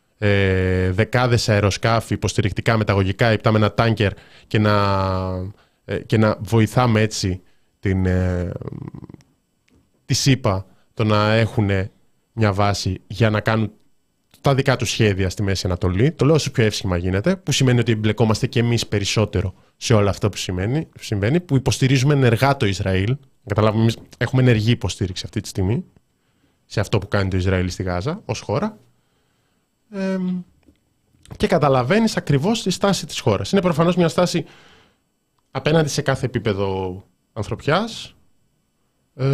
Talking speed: 135 wpm